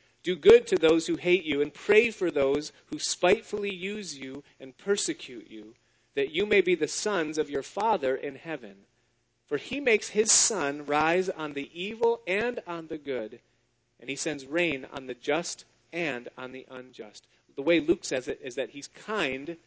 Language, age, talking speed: English, 30-49, 190 wpm